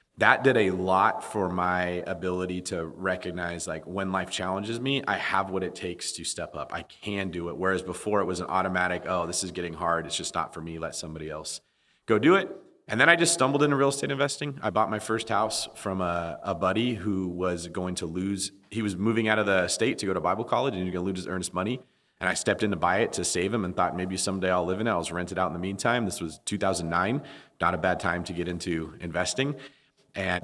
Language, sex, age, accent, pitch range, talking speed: English, male, 30-49, American, 90-110 Hz, 255 wpm